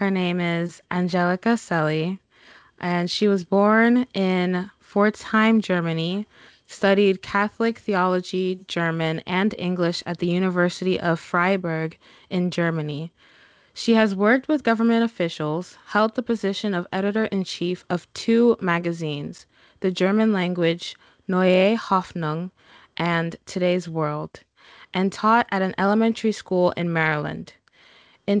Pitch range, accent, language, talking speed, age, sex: 170-210 Hz, American, English, 125 wpm, 20-39, female